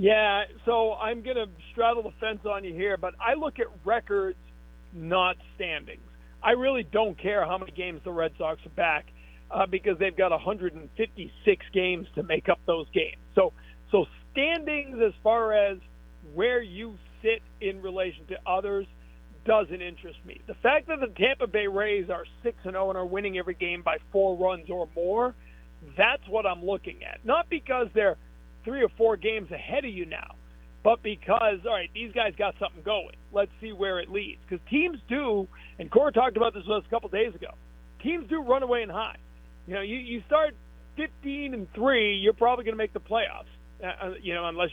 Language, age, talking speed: English, 50-69, 195 wpm